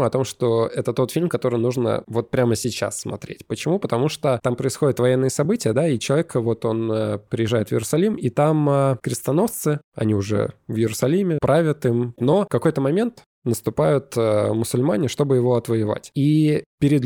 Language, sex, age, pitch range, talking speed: Russian, male, 20-39, 110-140 Hz, 170 wpm